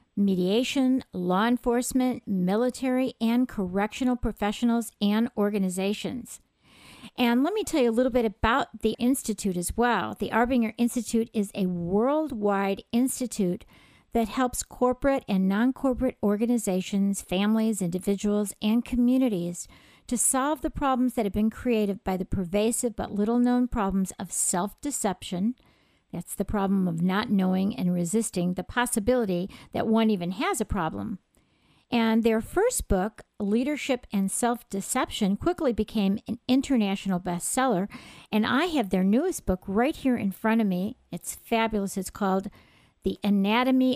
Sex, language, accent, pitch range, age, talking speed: female, English, American, 195-245 Hz, 50-69, 140 wpm